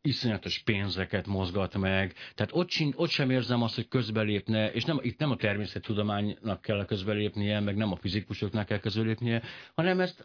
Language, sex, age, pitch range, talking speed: Hungarian, male, 60-79, 85-110 Hz, 170 wpm